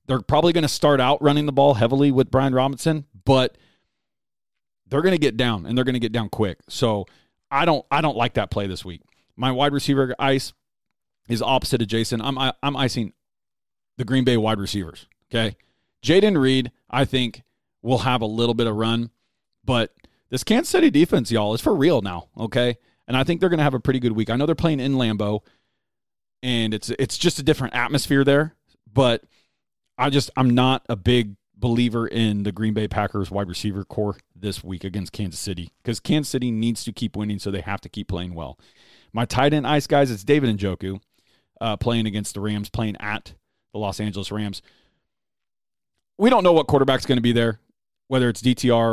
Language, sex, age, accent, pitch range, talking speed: English, male, 30-49, American, 105-130 Hz, 205 wpm